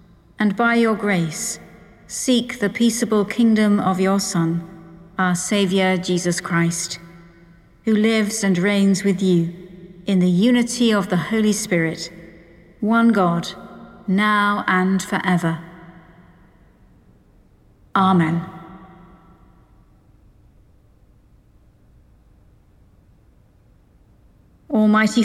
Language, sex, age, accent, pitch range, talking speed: English, female, 50-69, British, 180-225 Hz, 85 wpm